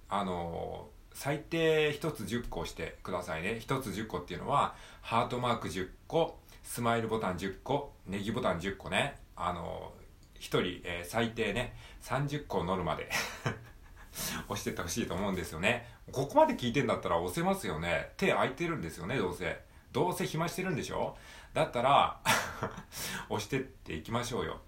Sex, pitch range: male, 95-135 Hz